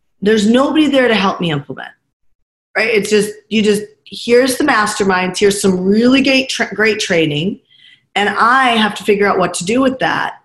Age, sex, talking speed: 40-59, female, 190 wpm